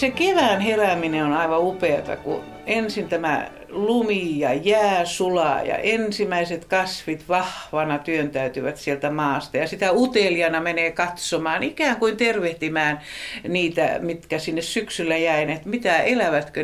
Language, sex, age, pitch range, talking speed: Finnish, female, 60-79, 160-220 Hz, 125 wpm